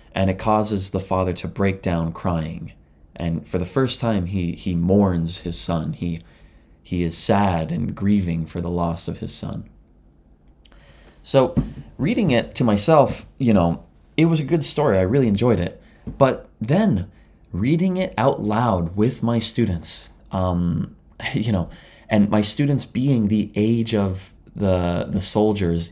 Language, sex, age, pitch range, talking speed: English, male, 20-39, 85-110 Hz, 160 wpm